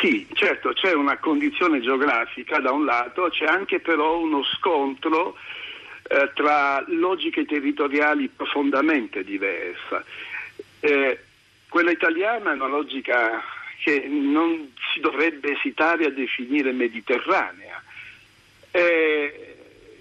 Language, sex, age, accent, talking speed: Italian, male, 60-79, native, 105 wpm